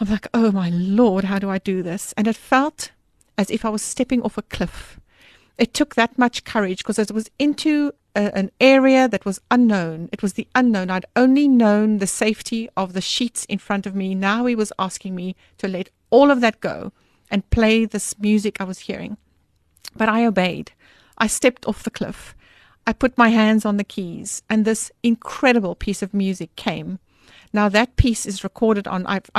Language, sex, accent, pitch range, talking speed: English, female, British, 190-235 Hz, 200 wpm